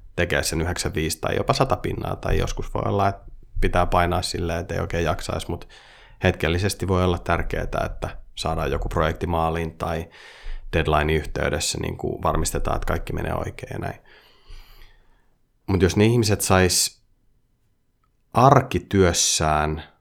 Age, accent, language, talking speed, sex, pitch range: 30-49, native, Finnish, 130 wpm, male, 85-100 Hz